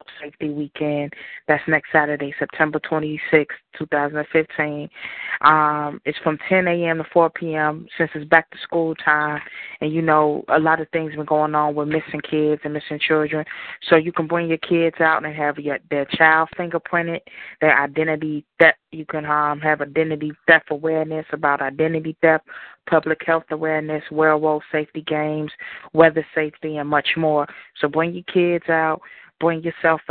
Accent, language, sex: American, English, female